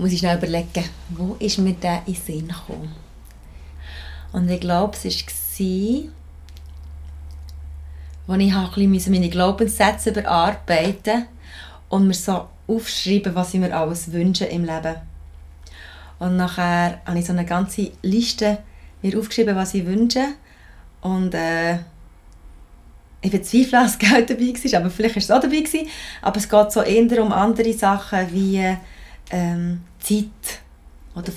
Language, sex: German, female